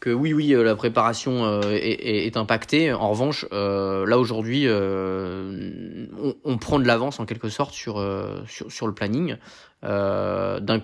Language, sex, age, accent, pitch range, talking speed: French, male, 20-39, French, 105-125 Hz, 175 wpm